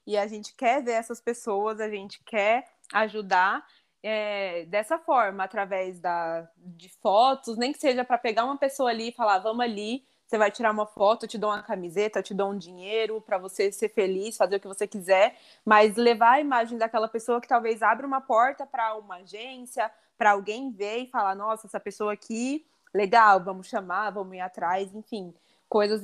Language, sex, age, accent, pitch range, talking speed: Portuguese, female, 20-39, Brazilian, 205-235 Hz, 195 wpm